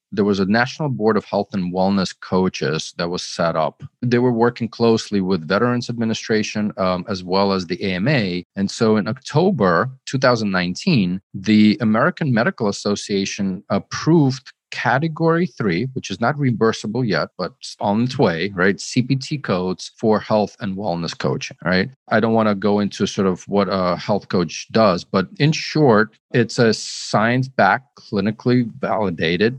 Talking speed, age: 160 wpm, 40-59